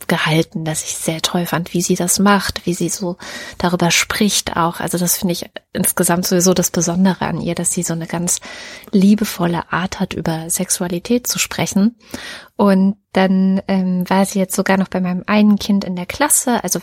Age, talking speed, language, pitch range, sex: 20-39, 195 wpm, German, 175-210 Hz, female